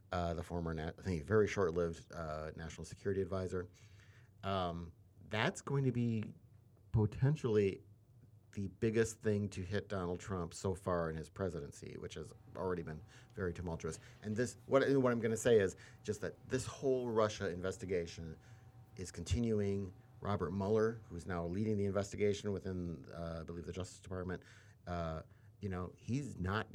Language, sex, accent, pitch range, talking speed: English, male, American, 90-115 Hz, 165 wpm